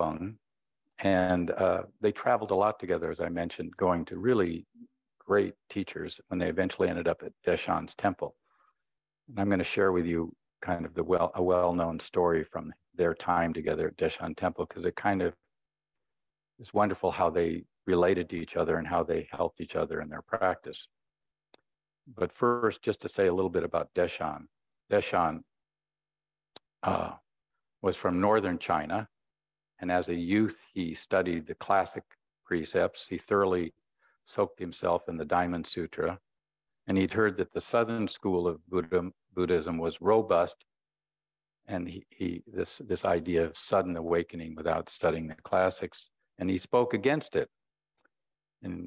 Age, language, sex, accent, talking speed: 50-69, English, male, American, 160 wpm